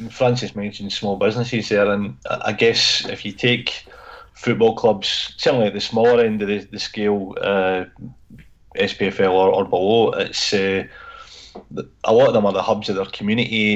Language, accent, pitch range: English, British, 100-115 Hz